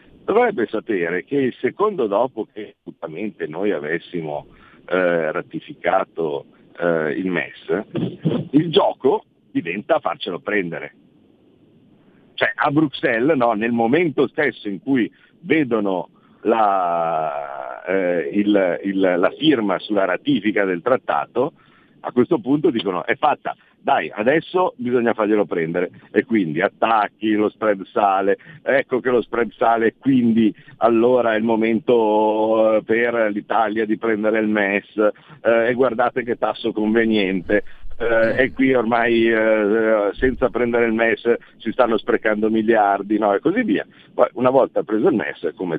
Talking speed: 135 wpm